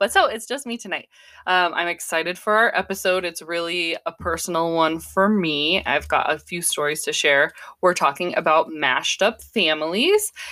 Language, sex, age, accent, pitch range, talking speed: English, female, 20-39, American, 155-200 Hz, 185 wpm